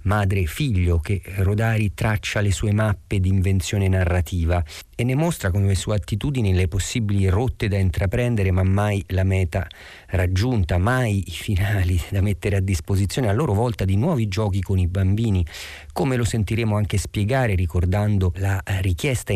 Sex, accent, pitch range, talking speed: male, native, 90-110 Hz, 165 wpm